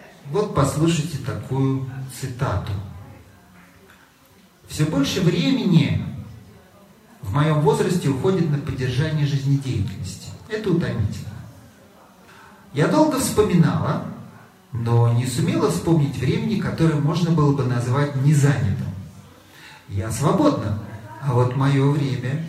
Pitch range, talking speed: 120-170 Hz, 100 wpm